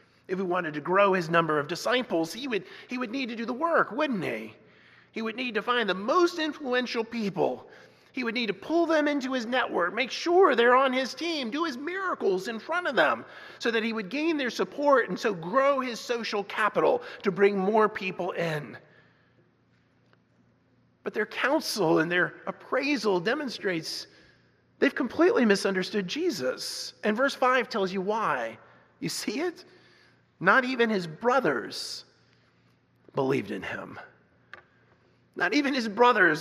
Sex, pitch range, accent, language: male, 205-285 Hz, American, English